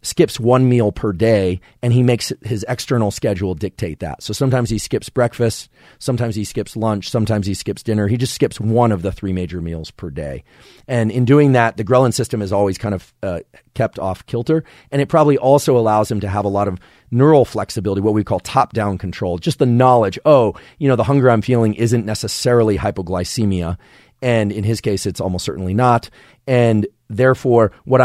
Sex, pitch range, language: male, 95-120 Hz, English